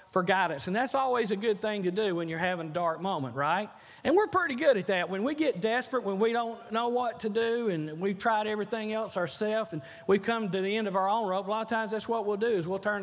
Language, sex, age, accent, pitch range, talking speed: English, male, 40-59, American, 180-230 Hz, 280 wpm